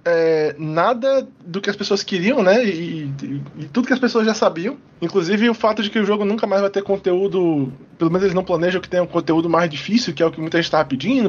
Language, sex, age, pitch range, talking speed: Portuguese, male, 20-39, 155-195 Hz, 255 wpm